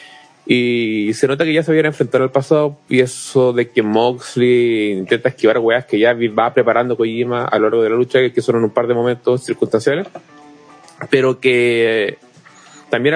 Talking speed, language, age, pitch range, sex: 180 wpm, Spanish, 30-49, 115-145 Hz, male